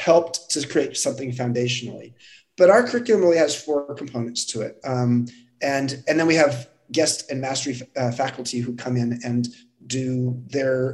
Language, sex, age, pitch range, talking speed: English, male, 30-49, 130-180 Hz, 175 wpm